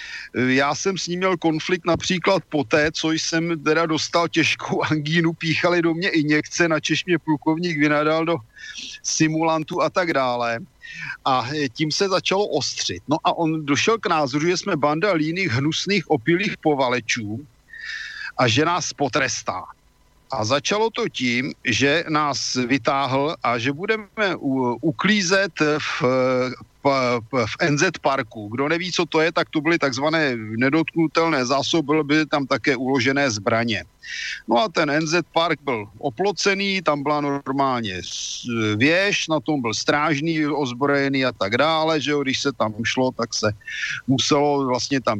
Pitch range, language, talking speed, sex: 135-170 Hz, Slovak, 145 wpm, male